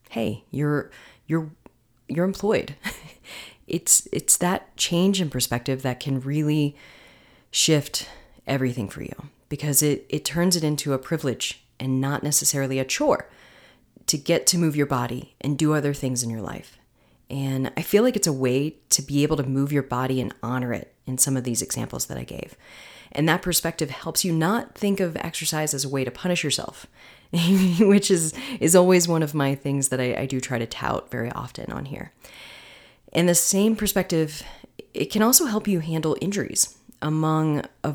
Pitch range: 130-170 Hz